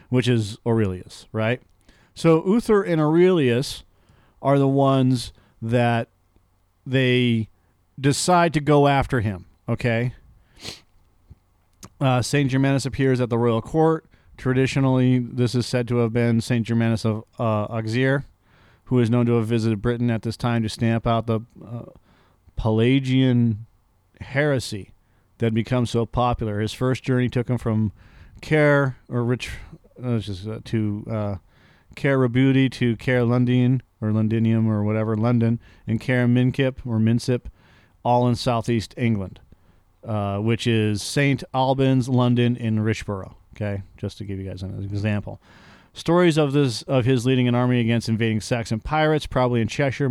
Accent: American